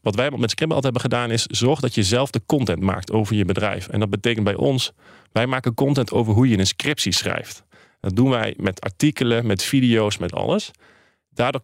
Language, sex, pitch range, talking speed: Dutch, male, 105-135 Hz, 215 wpm